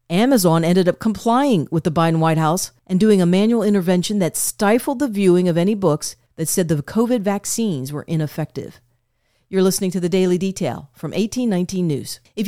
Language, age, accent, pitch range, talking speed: English, 40-59, American, 160-195 Hz, 185 wpm